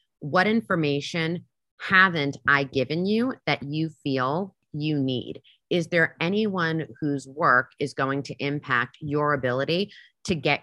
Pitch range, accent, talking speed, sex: 135-165 Hz, American, 135 wpm, female